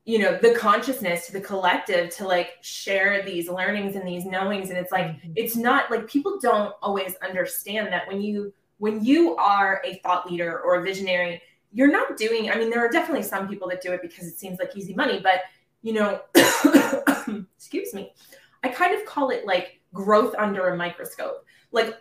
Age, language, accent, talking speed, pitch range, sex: 20-39, English, American, 195 wpm, 185-250 Hz, female